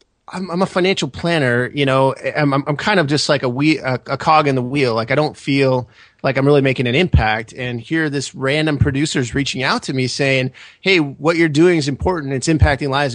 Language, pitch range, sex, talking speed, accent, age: English, 120-145 Hz, male, 235 wpm, American, 30-49